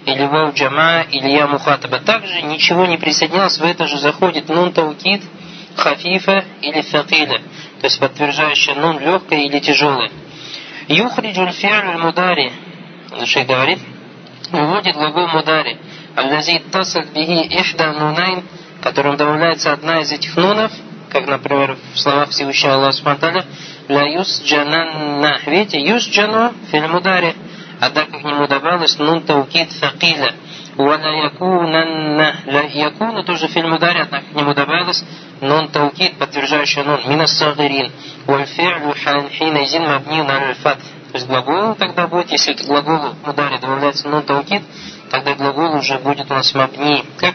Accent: native